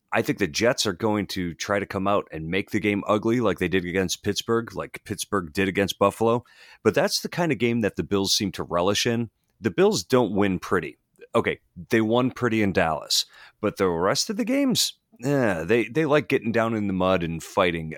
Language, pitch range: English, 95-120 Hz